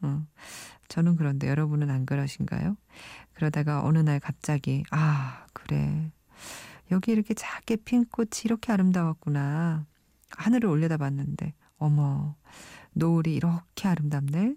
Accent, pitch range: native, 145-180 Hz